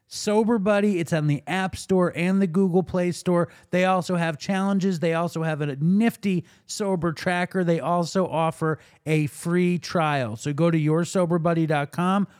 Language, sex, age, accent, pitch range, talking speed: English, male, 30-49, American, 165-205 Hz, 160 wpm